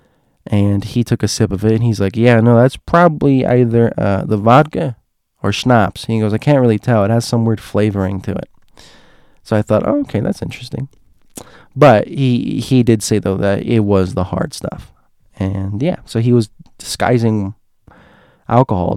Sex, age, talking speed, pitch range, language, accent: male, 20-39, 185 wpm, 105-130 Hz, English, American